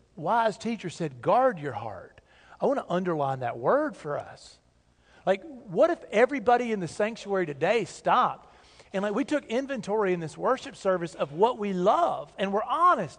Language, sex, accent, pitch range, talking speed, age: English, male, American, 150-215 Hz, 175 wpm, 40-59